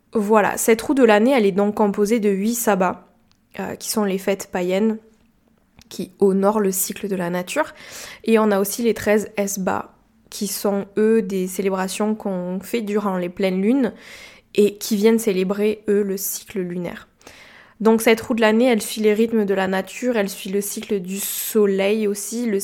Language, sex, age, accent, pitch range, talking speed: French, female, 20-39, French, 200-230 Hz, 190 wpm